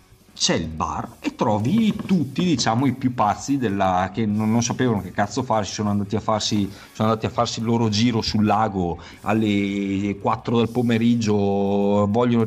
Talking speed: 170 wpm